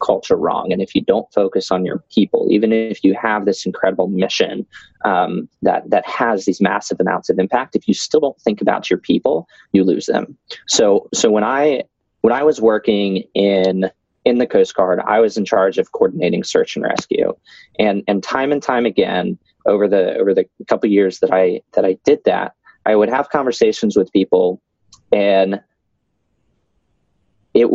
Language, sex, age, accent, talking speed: English, male, 20-39, American, 185 wpm